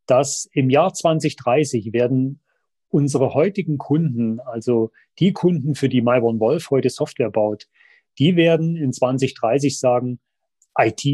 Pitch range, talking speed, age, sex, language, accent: 125-155 Hz, 125 wpm, 30-49, male, German, German